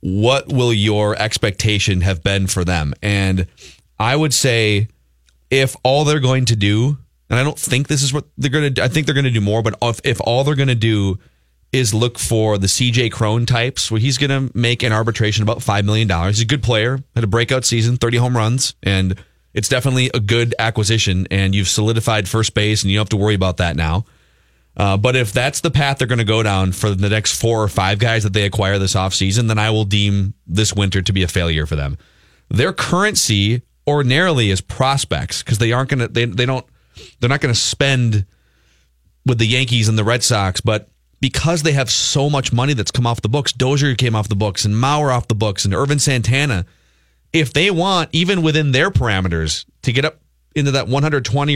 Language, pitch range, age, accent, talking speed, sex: English, 100-130 Hz, 30-49, American, 220 wpm, male